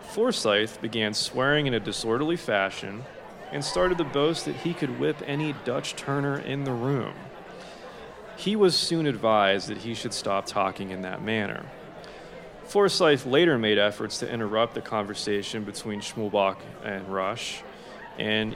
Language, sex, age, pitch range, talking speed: English, male, 30-49, 105-140 Hz, 150 wpm